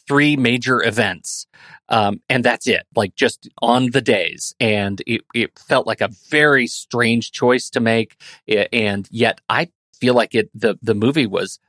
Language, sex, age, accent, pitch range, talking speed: English, male, 40-59, American, 115-165 Hz, 175 wpm